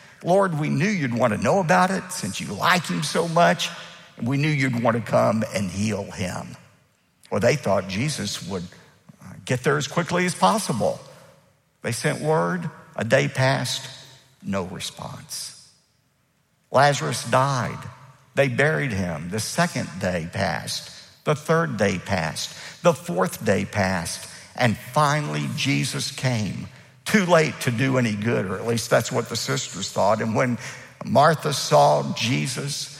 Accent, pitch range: American, 115-155 Hz